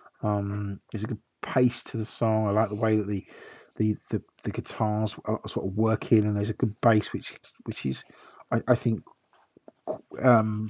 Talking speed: 190 wpm